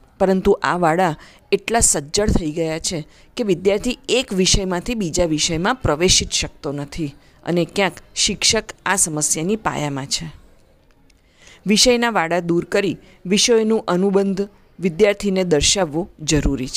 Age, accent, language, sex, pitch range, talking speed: 40-59, native, Gujarati, female, 155-210 Hz, 115 wpm